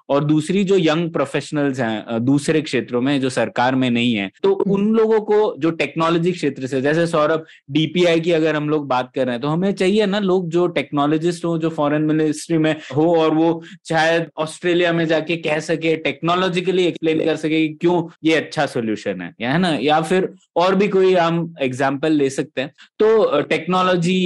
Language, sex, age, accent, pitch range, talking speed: Hindi, male, 20-39, native, 140-175 Hz, 195 wpm